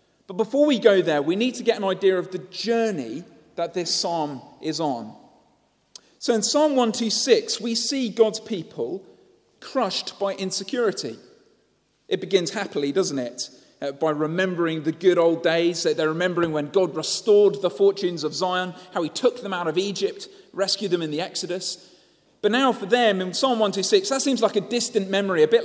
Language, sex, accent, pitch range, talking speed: English, male, British, 155-215 Hz, 180 wpm